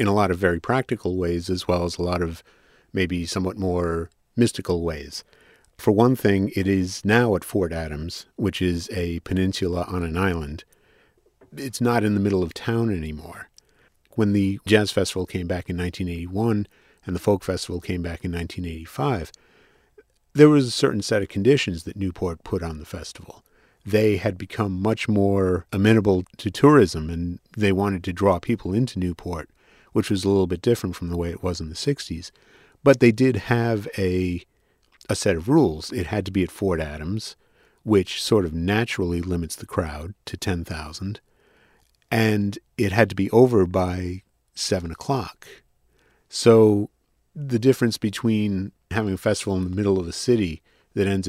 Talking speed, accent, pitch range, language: 175 wpm, American, 90-105 Hz, English